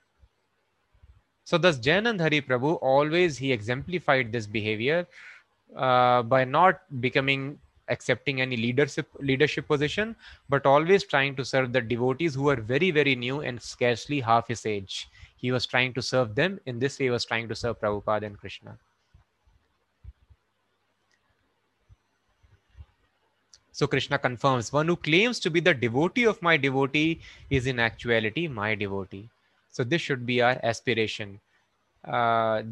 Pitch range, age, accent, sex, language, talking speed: 115-145 Hz, 20-39, Indian, male, English, 140 wpm